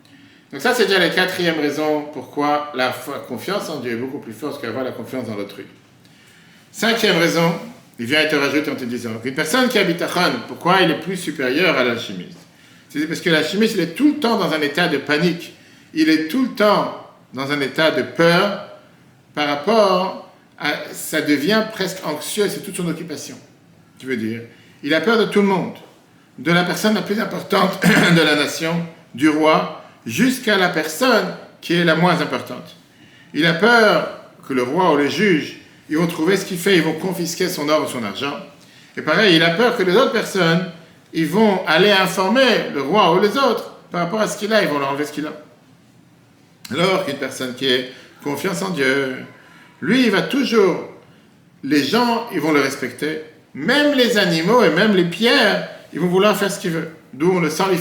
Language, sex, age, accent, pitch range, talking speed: French, male, 50-69, French, 145-195 Hz, 205 wpm